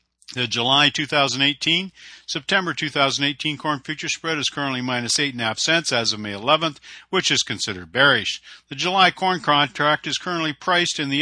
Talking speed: 160 wpm